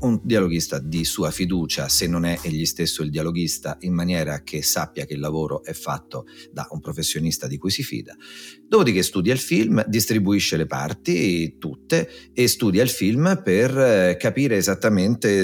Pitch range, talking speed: 85-115 Hz, 165 wpm